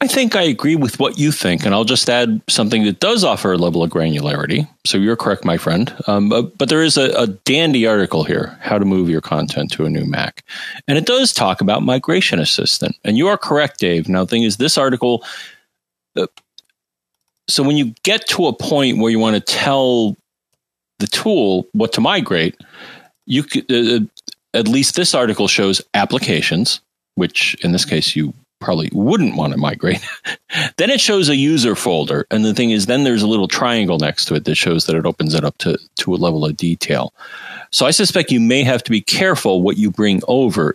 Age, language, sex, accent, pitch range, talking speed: 40-59, English, male, American, 90-135 Hz, 210 wpm